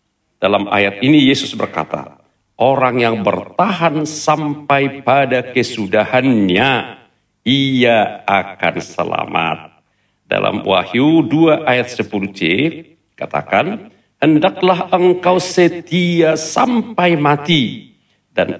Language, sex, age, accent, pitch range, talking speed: Indonesian, male, 50-69, native, 110-155 Hz, 85 wpm